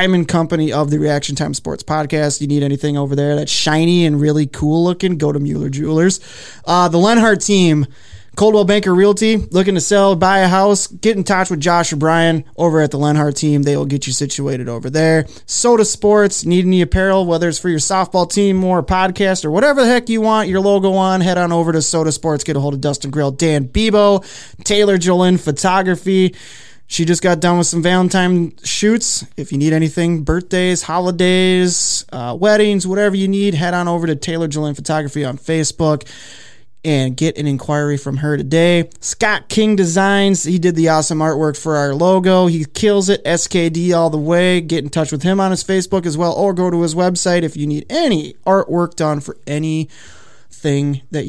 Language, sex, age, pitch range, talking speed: English, male, 20-39, 150-190 Hz, 200 wpm